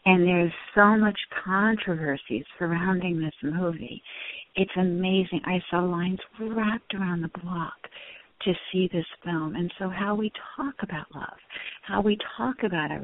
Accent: American